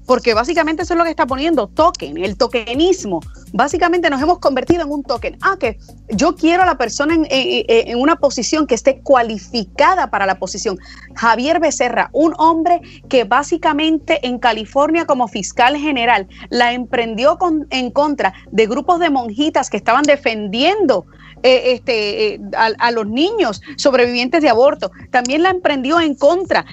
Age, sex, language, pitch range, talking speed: 30-49, female, Spanish, 240-325 Hz, 160 wpm